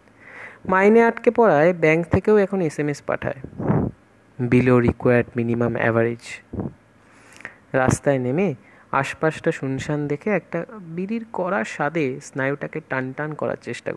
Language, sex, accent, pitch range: Bengali, male, native, 125-195 Hz